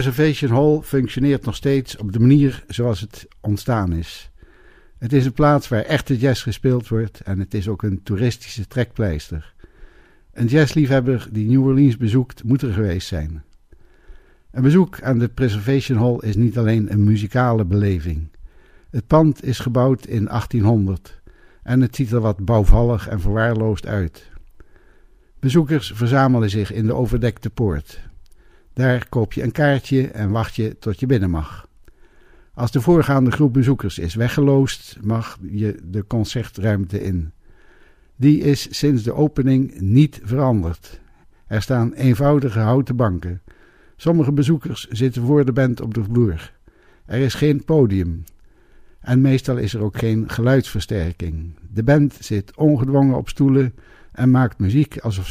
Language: Dutch